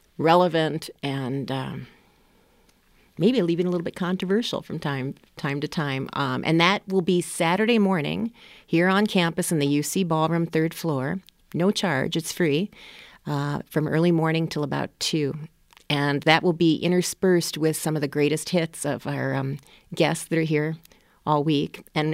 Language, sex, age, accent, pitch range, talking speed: English, female, 40-59, American, 145-170 Hz, 170 wpm